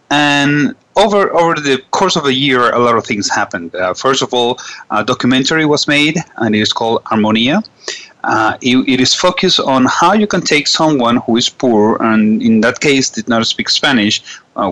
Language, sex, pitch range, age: English, male, 115-150 Hz, 30-49